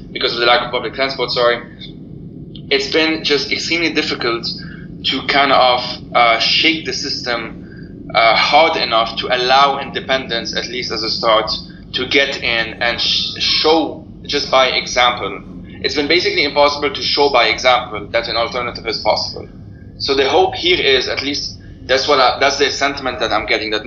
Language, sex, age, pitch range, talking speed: English, male, 20-39, 120-145 Hz, 170 wpm